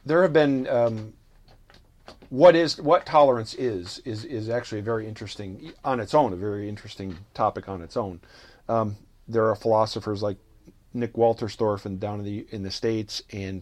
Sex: male